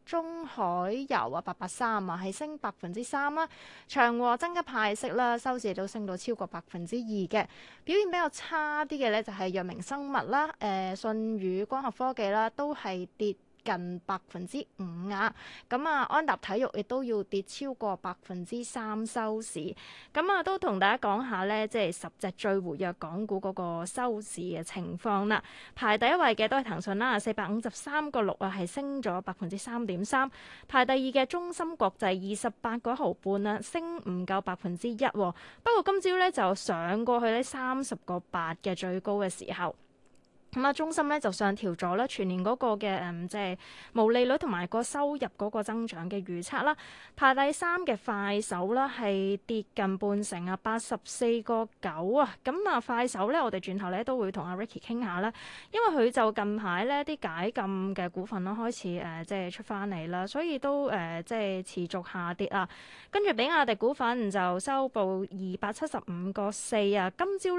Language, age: Chinese, 20-39